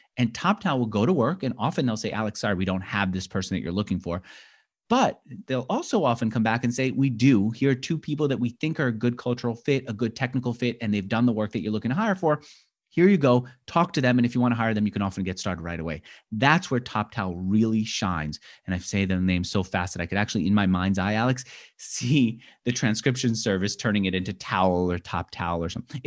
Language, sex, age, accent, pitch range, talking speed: English, male, 30-49, American, 95-130 Hz, 260 wpm